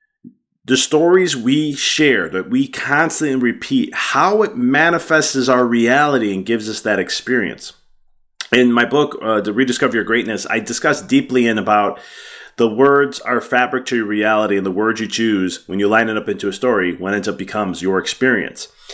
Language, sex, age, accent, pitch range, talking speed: English, male, 30-49, American, 110-140 Hz, 180 wpm